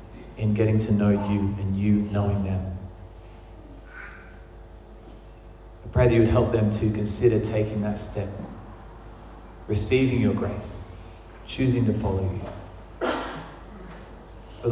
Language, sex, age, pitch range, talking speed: English, male, 30-49, 95-110 Hz, 120 wpm